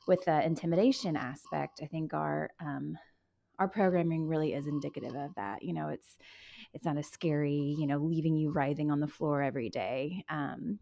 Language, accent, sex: English, American, female